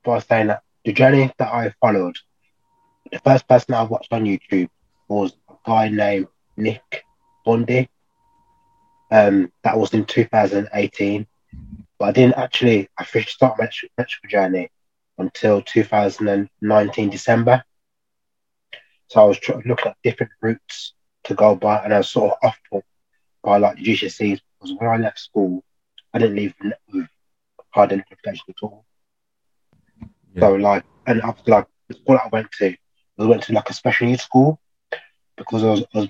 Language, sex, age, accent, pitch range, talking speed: English, male, 20-39, British, 100-125 Hz, 160 wpm